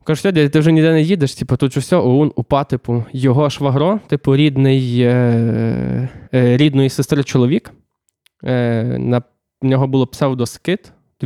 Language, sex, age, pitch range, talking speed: Ukrainian, male, 20-39, 125-150 Hz, 150 wpm